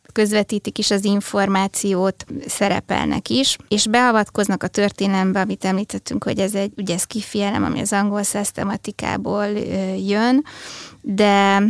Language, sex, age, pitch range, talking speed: Hungarian, female, 20-39, 195-225 Hz, 125 wpm